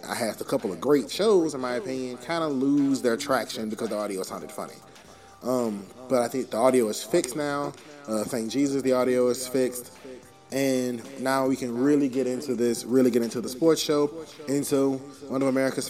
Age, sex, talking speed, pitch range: 20-39, male, 205 wpm, 115-130 Hz